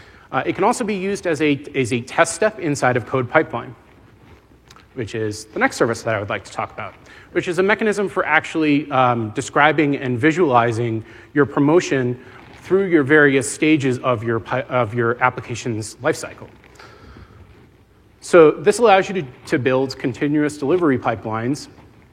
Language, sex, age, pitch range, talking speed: English, male, 30-49, 125-165 Hz, 165 wpm